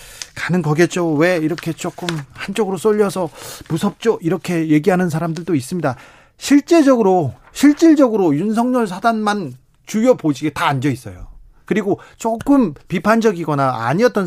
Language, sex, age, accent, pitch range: Korean, male, 40-59, native, 140-195 Hz